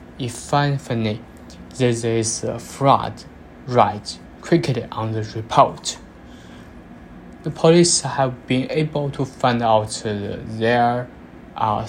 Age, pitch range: 20-39, 110-135 Hz